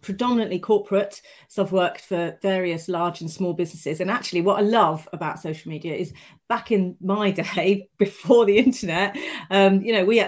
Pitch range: 180-215 Hz